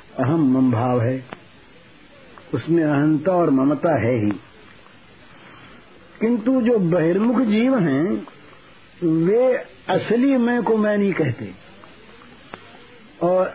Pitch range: 170-230 Hz